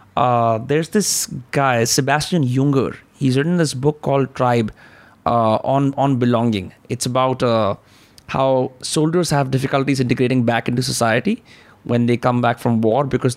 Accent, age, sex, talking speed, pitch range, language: native, 30-49, male, 155 wpm, 120-145 Hz, Hindi